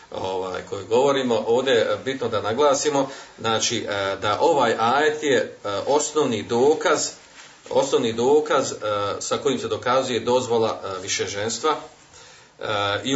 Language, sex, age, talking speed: Croatian, male, 40-59, 110 wpm